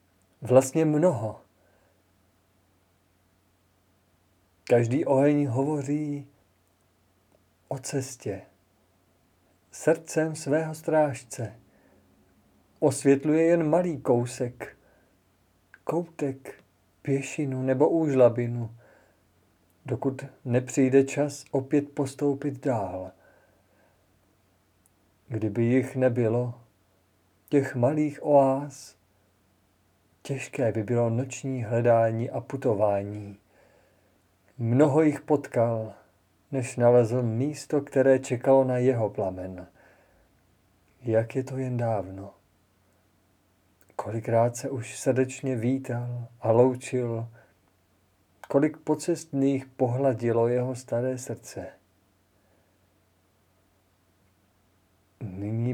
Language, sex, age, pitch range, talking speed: Czech, male, 50-69, 95-135 Hz, 70 wpm